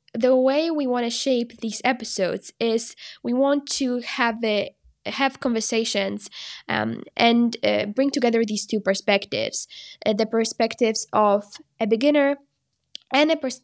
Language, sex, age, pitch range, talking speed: English, female, 10-29, 205-245 Hz, 145 wpm